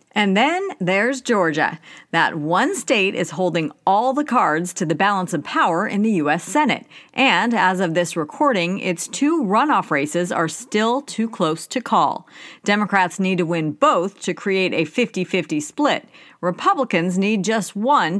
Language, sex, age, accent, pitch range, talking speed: English, female, 40-59, American, 170-235 Hz, 165 wpm